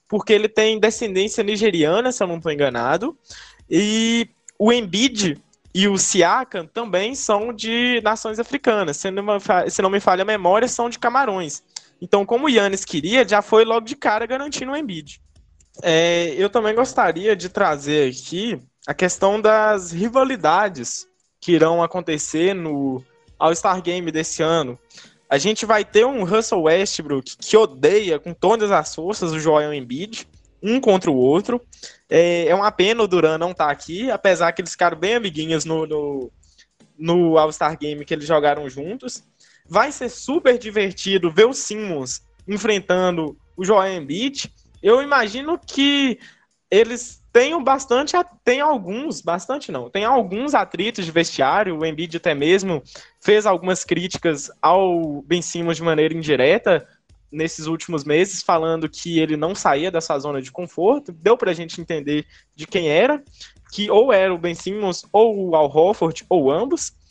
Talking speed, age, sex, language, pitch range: 160 wpm, 20-39, male, Portuguese, 160-225 Hz